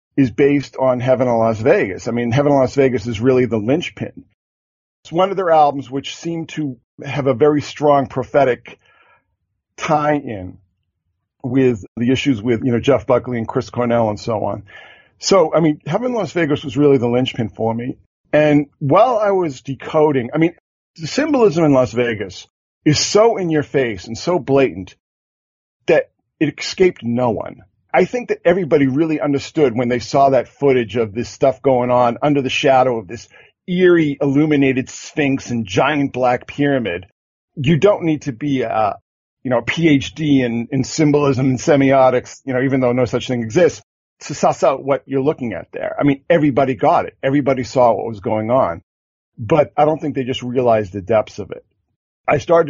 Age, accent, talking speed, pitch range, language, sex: 40-59, American, 185 wpm, 120-150 Hz, English, male